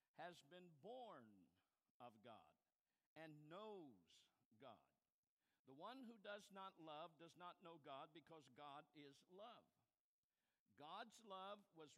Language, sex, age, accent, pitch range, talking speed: English, male, 50-69, American, 155-210 Hz, 125 wpm